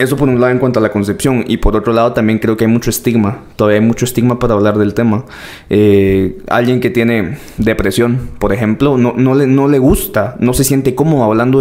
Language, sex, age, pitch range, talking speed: Spanish, male, 20-39, 110-140 Hz, 235 wpm